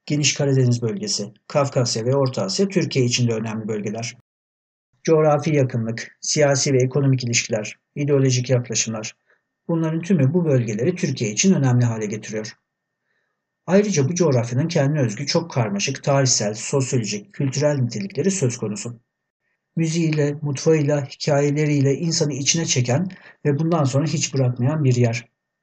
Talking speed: 130 wpm